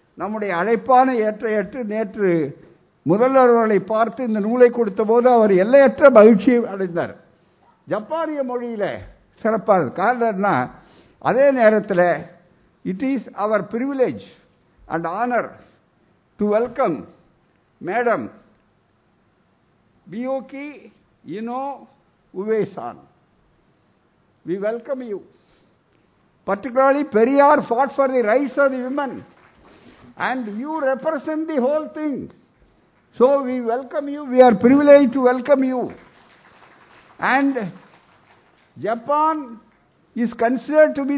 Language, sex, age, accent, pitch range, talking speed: Tamil, male, 60-79, native, 215-285 Hz, 85 wpm